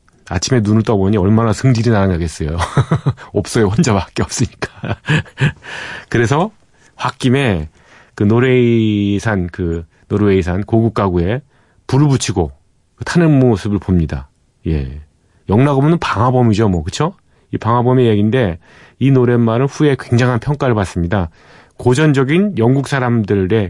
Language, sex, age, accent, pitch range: Korean, male, 40-59, native, 100-135 Hz